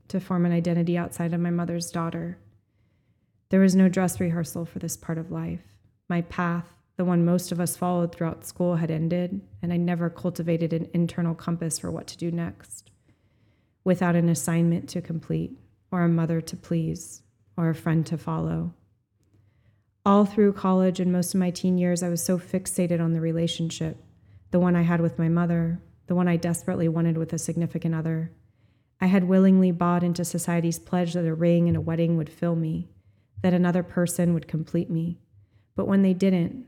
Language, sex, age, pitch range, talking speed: English, female, 30-49, 165-180 Hz, 190 wpm